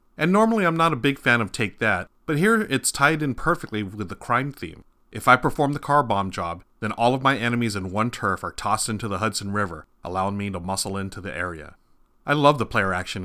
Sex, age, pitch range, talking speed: male, 30-49, 100-125 Hz, 240 wpm